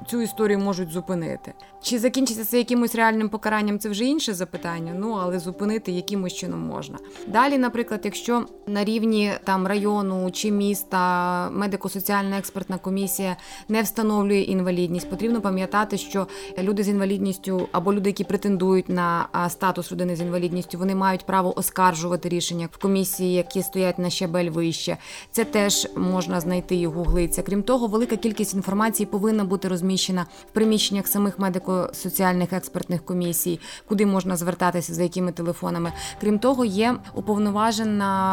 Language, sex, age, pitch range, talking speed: Ukrainian, female, 20-39, 180-215 Hz, 140 wpm